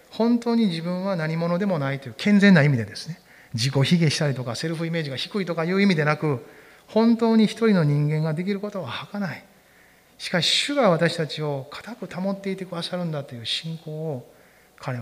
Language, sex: Japanese, male